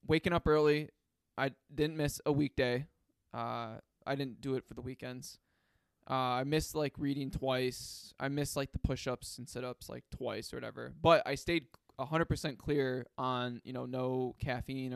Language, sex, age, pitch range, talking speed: English, male, 20-39, 130-145 Hz, 185 wpm